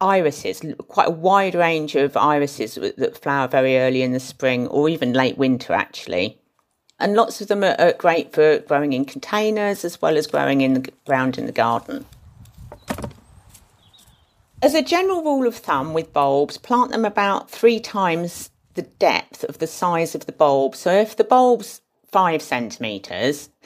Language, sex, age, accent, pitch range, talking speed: English, female, 50-69, British, 135-200 Hz, 165 wpm